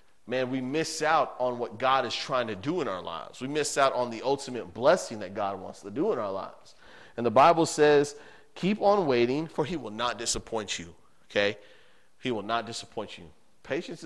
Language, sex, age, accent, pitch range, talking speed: English, male, 30-49, American, 115-150 Hz, 210 wpm